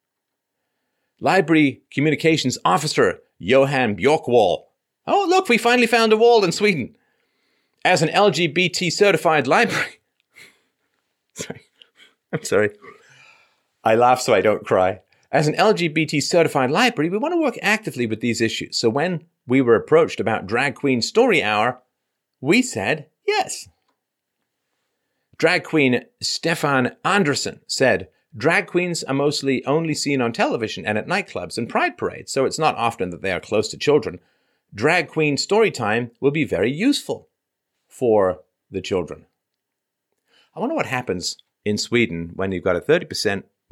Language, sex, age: English, male, 40-59